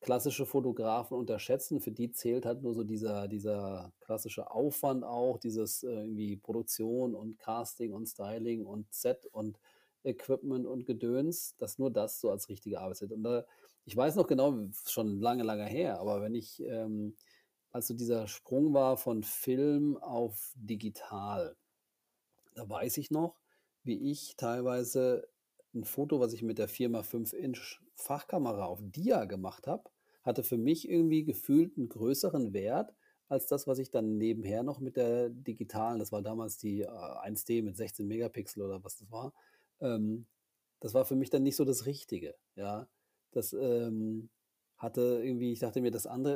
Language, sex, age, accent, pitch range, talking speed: German, male, 40-59, German, 110-130 Hz, 165 wpm